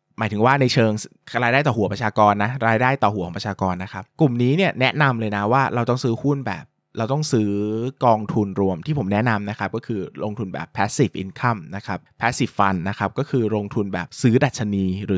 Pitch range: 100-135 Hz